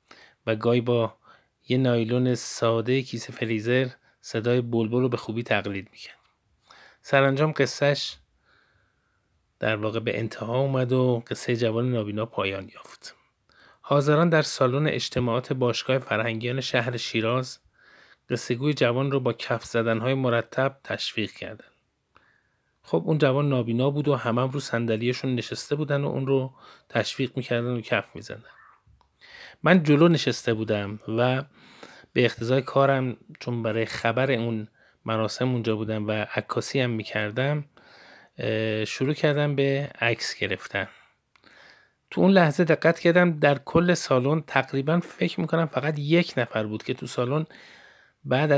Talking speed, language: 130 wpm, Persian